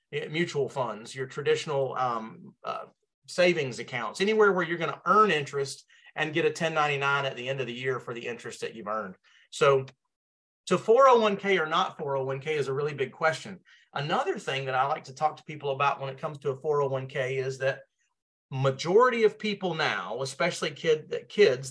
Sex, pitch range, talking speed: male, 135-200 Hz, 180 wpm